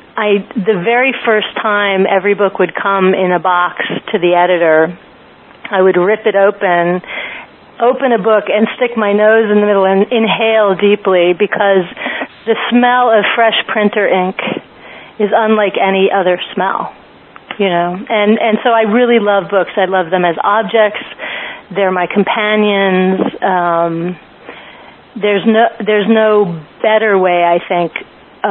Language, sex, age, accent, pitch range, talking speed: English, female, 40-59, American, 180-210 Hz, 150 wpm